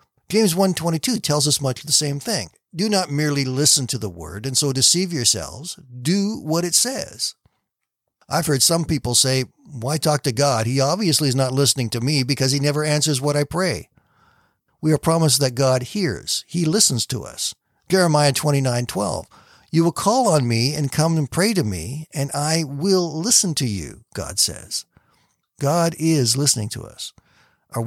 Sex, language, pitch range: male, English, 125-160 Hz